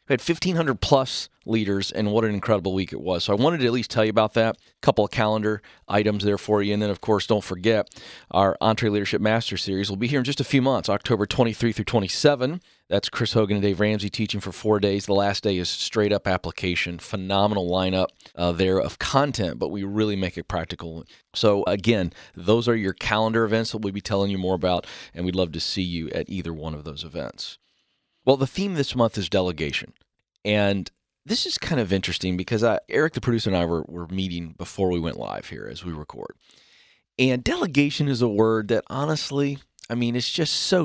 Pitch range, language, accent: 95-120 Hz, English, American